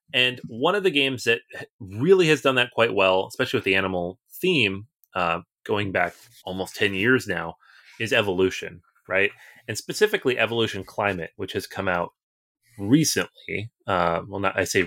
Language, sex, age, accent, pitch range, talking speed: English, male, 30-49, American, 95-130 Hz, 165 wpm